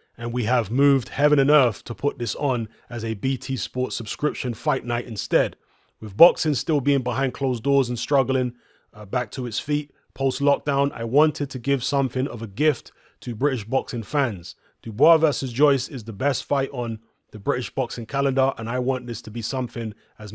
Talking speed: 200 wpm